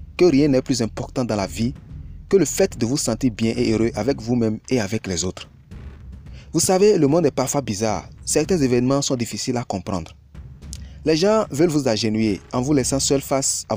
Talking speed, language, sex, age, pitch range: 205 wpm, French, male, 30-49, 100-145 Hz